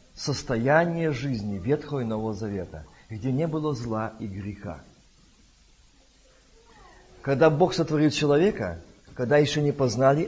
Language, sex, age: Russian, male, 50-69